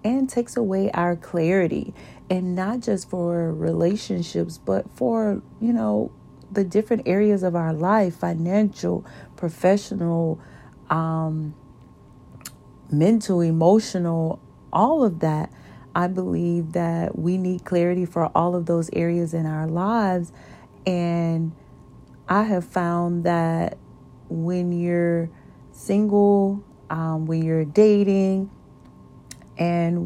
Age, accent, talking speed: 40-59, American, 110 wpm